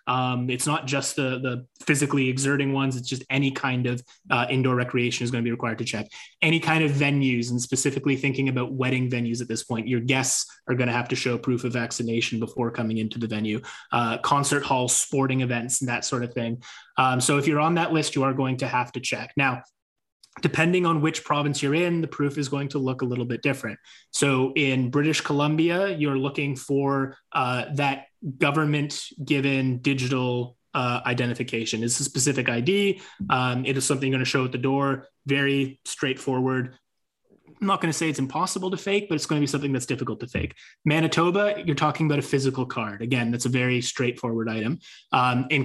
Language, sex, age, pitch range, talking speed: English, male, 20-39, 125-145 Hz, 210 wpm